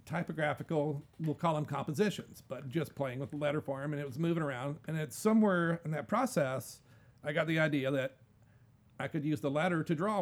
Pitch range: 125-165 Hz